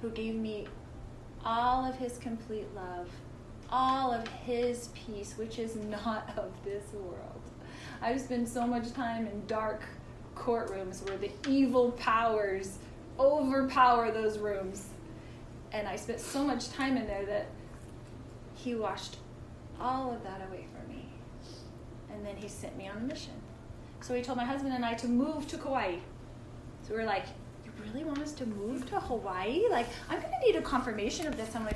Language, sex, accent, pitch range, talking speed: English, female, American, 210-255 Hz, 170 wpm